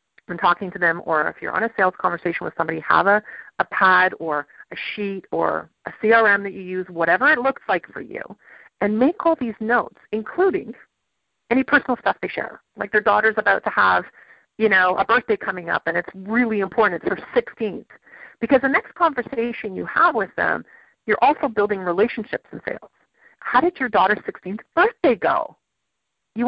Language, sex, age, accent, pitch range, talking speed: English, female, 40-59, American, 185-245 Hz, 190 wpm